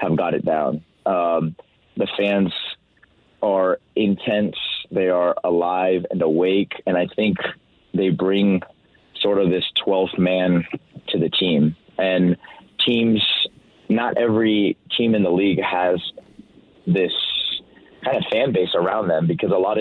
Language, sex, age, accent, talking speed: English, male, 30-49, American, 140 wpm